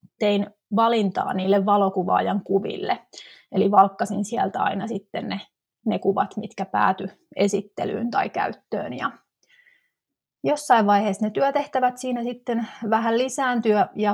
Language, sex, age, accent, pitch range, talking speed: Finnish, female, 30-49, native, 195-235 Hz, 120 wpm